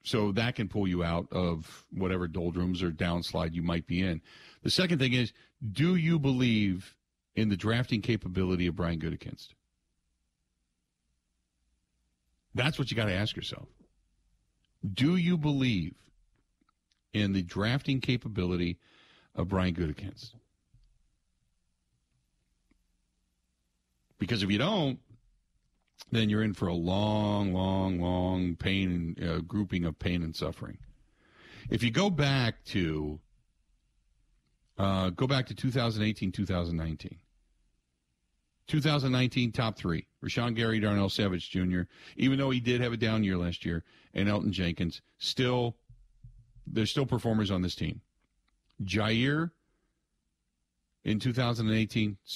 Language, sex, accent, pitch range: English, male, American, 80-120 Hz